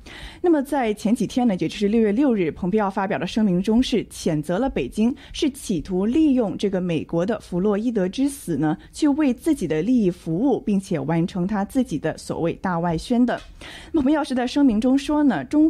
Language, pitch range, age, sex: Chinese, 180-265 Hz, 20-39, female